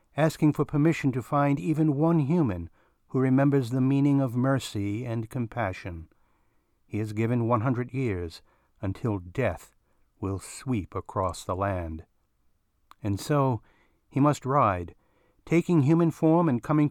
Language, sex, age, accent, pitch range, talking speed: English, male, 60-79, American, 105-145 Hz, 140 wpm